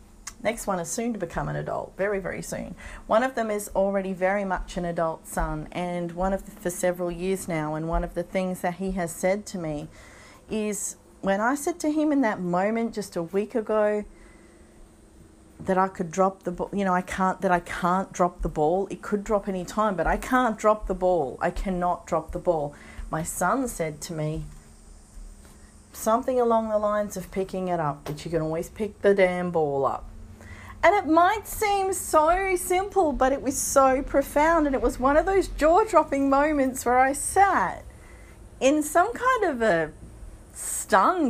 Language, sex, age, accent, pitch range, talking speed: English, female, 40-59, Australian, 175-235 Hz, 200 wpm